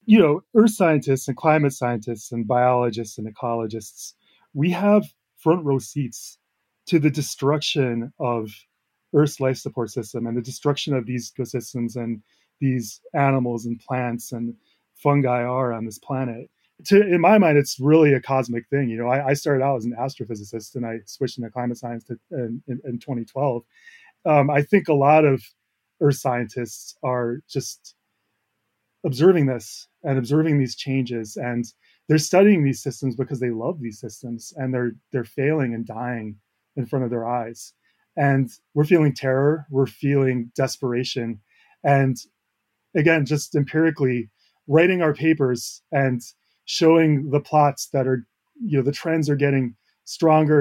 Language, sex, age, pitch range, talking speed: English, male, 20-39, 120-150 Hz, 160 wpm